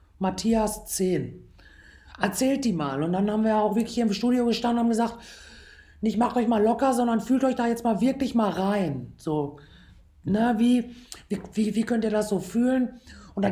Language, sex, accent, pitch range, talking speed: German, female, German, 190-235 Hz, 200 wpm